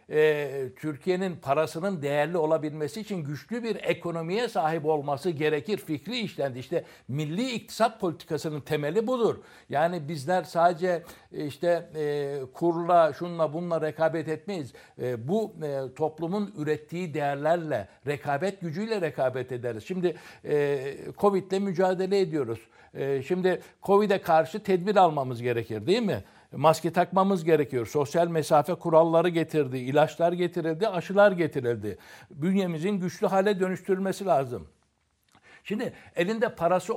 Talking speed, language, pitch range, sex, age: 110 wpm, Turkish, 150-185 Hz, male, 60-79